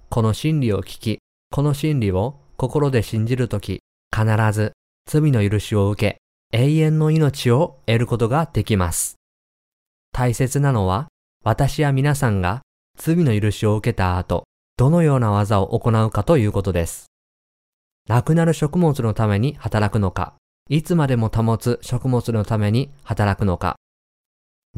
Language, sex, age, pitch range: Japanese, male, 20-39, 95-135 Hz